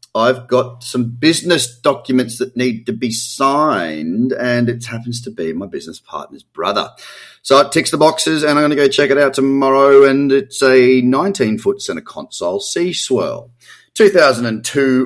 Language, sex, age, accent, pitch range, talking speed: English, male, 30-49, Australian, 120-150 Hz, 165 wpm